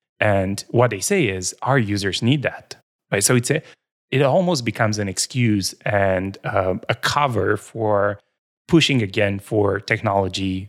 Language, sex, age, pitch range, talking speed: English, male, 20-39, 100-130 Hz, 150 wpm